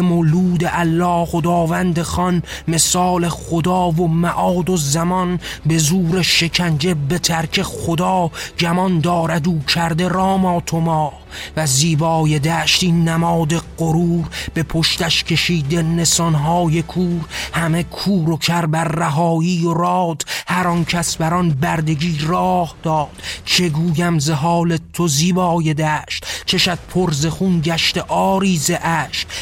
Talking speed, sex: 115 wpm, male